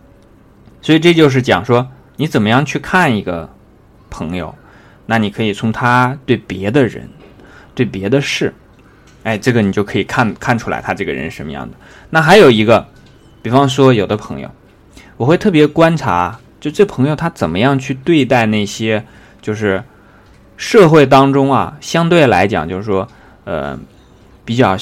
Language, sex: Chinese, male